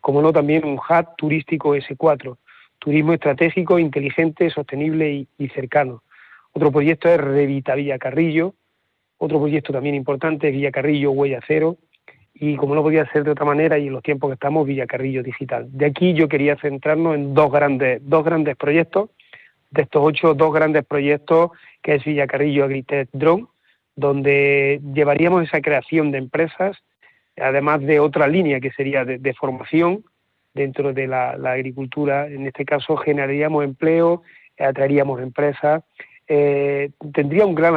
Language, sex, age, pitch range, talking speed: Spanish, male, 40-59, 140-160 Hz, 155 wpm